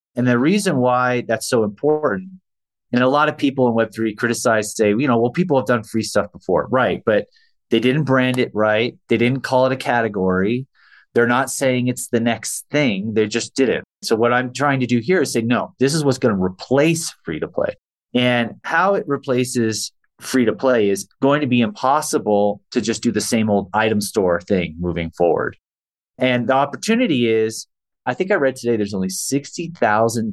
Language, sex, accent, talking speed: English, male, American, 195 wpm